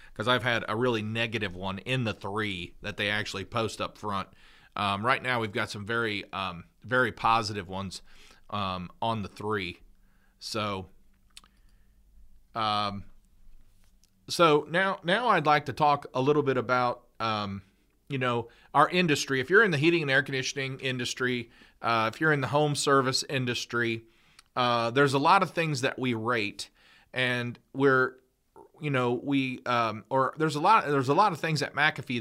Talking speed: 170 wpm